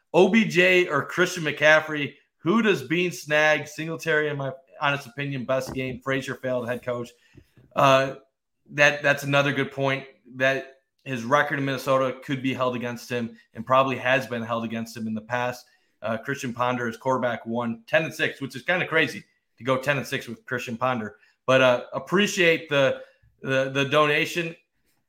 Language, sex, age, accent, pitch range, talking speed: English, male, 30-49, American, 125-150 Hz, 175 wpm